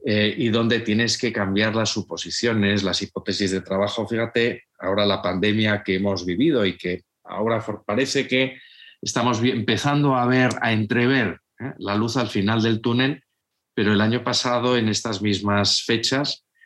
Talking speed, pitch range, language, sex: 160 wpm, 100-125 Hz, Spanish, male